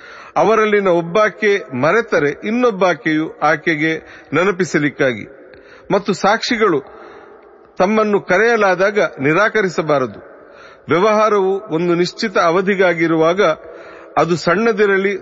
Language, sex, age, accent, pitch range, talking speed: Kannada, male, 40-59, native, 170-215 Hz, 70 wpm